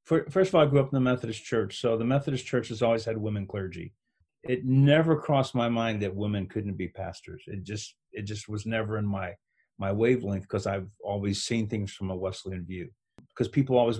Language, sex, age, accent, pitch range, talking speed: English, male, 40-59, American, 100-125 Hz, 220 wpm